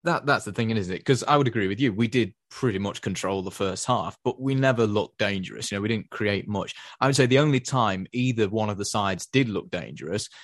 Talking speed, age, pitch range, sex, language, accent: 260 wpm, 20-39, 100-125 Hz, male, English, British